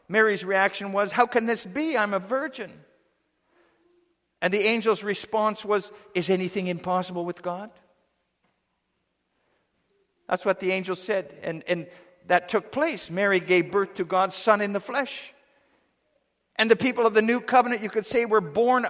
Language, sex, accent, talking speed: English, male, American, 160 wpm